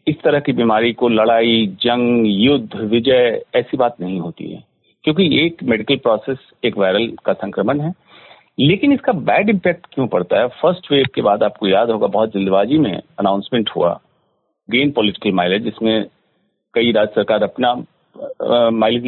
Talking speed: 160 wpm